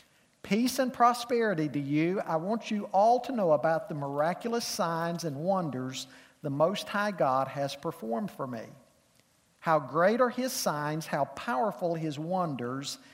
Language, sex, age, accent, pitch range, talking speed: English, male, 50-69, American, 150-215 Hz, 155 wpm